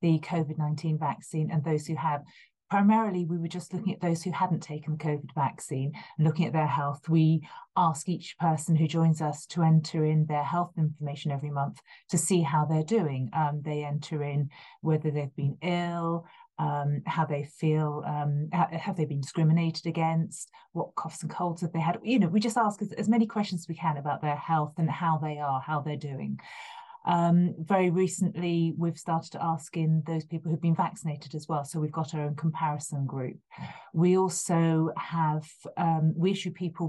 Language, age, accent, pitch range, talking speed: English, 30-49, British, 150-175 Hz, 195 wpm